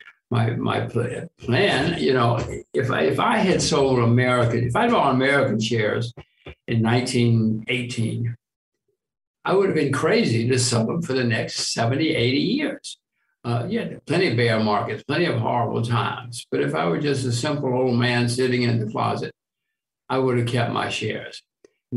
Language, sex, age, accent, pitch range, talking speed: English, male, 60-79, American, 120-170 Hz, 170 wpm